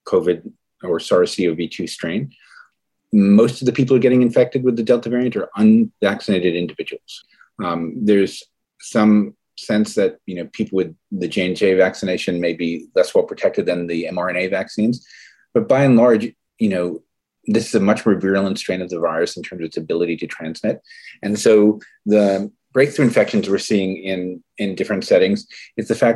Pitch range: 95-125 Hz